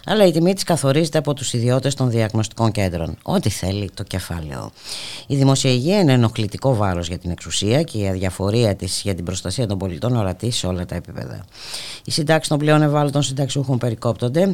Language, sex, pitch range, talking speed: Greek, female, 95-130 Hz, 180 wpm